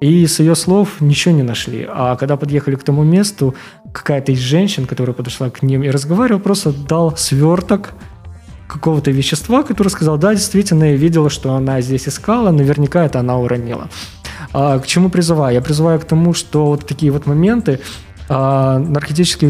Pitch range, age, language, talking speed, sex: 125-155 Hz, 20-39, Ukrainian, 165 wpm, male